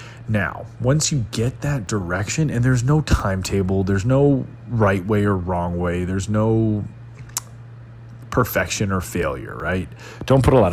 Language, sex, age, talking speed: English, male, 30-49, 150 wpm